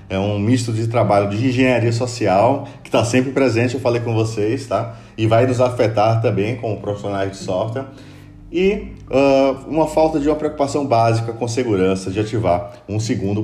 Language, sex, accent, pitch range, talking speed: Portuguese, male, Brazilian, 100-135 Hz, 180 wpm